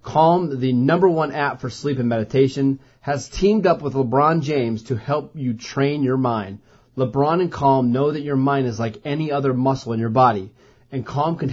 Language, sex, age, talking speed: English, male, 30-49, 205 wpm